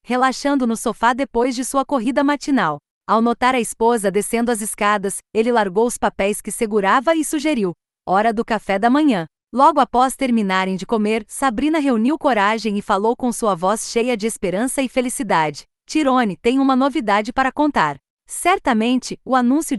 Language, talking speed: Portuguese, 165 wpm